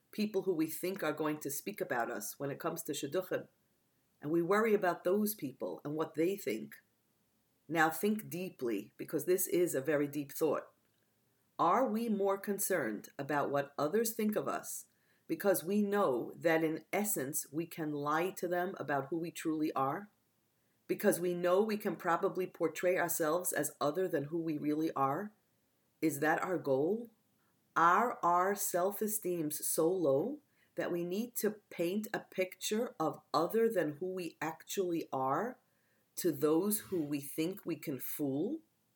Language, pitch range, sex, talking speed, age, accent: English, 160-200 Hz, female, 165 wpm, 50-69, American